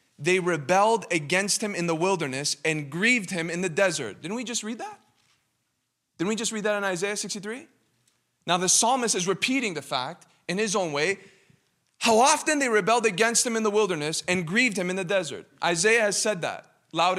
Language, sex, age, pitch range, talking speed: English, male, 20-39, 175-235 Hz, 200 wpm